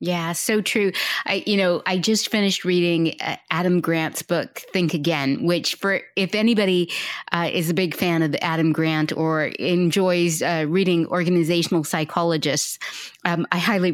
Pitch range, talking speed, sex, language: 175-250 Hz, 160 wpm, female, English